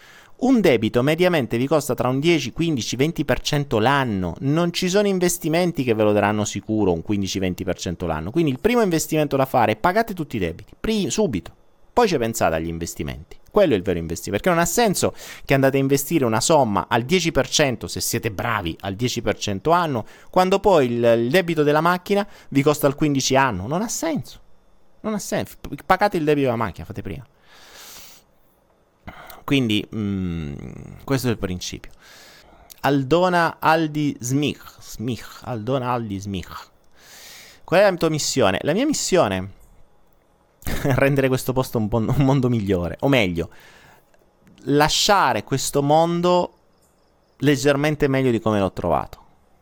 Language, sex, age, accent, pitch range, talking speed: Italian, male, 30-49, native, 105-155 Hz, 150 wpm